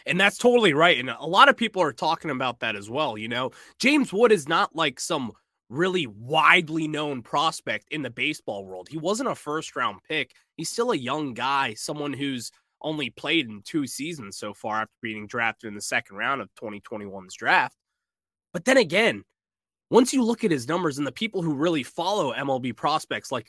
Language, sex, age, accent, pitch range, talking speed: English, male, 20-39, American, 125-185 Hz, 200 wpm